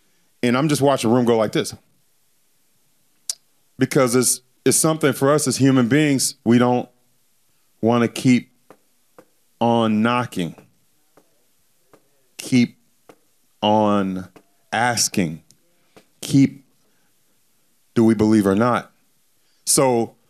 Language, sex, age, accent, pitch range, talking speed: English, male, 30-49, American, 110-145 Hz, 105 wpm